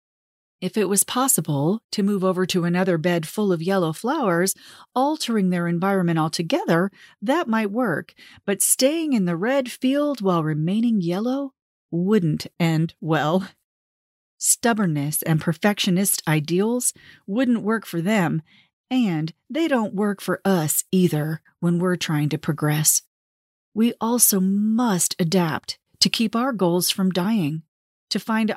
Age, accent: 40-59, American